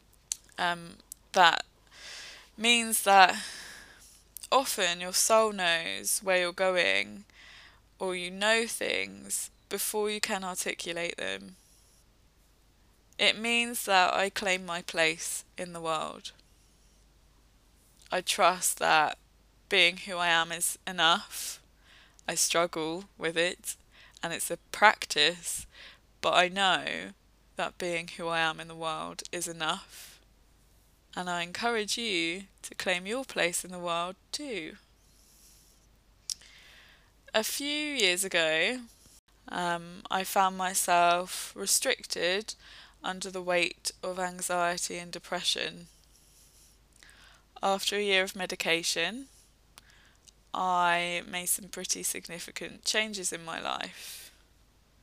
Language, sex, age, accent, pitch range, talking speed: English, female, 20-39, British, 170-195 Hz, 110 wpm